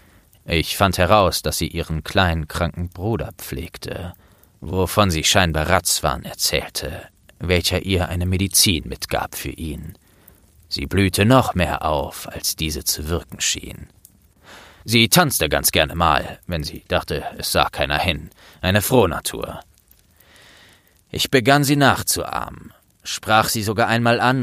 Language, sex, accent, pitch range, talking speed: German, male, German, 85-105 Hz, 135 wpm